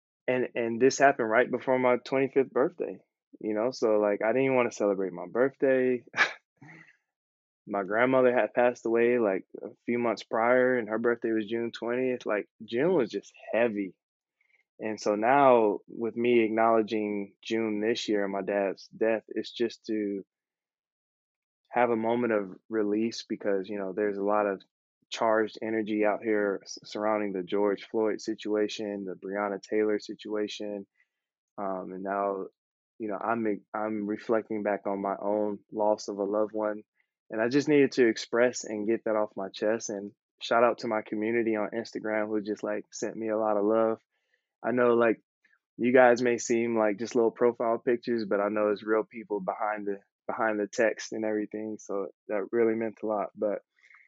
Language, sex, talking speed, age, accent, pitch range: English, male, 180 wpm, 20-39, American, 105-115 Hz